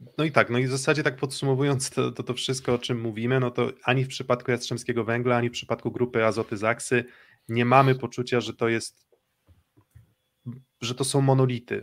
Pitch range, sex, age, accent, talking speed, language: 115-135 Hz, male, 20-39, native, 195 wpm, Polish